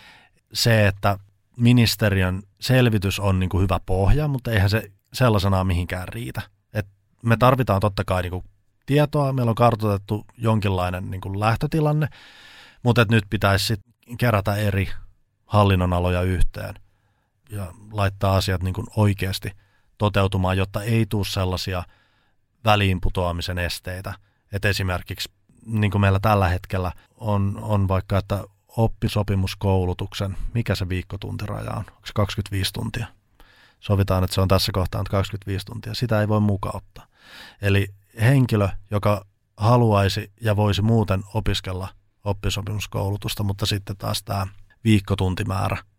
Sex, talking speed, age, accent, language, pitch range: male, 120 wpm, 30-49, native, Finnish, 95-110 Hz